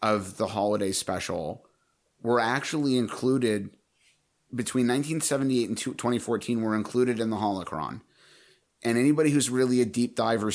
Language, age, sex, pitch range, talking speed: English, 30-49, male, 105-125 Hz, 130 wpm